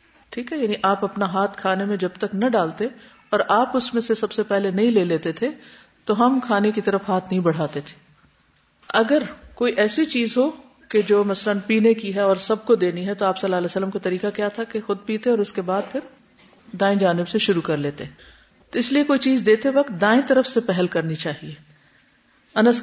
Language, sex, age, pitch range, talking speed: Urdu, female, 50-69, 185-240 Hz, 230 wpm